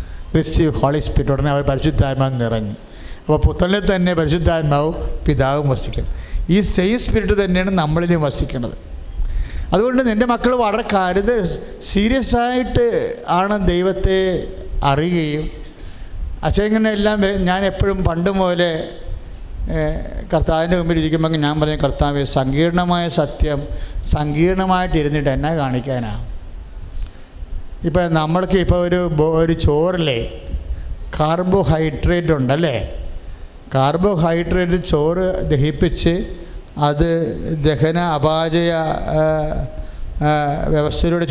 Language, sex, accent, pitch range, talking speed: English, male, Indian, 140-180 Hz, 40 wpm